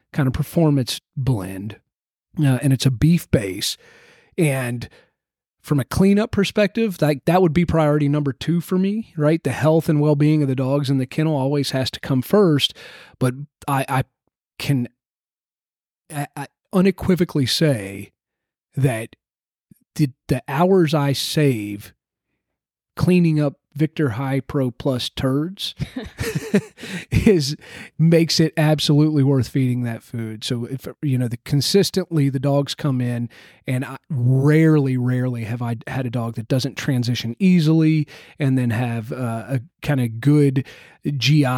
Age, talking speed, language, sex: 30-49, 145 wpm, English, male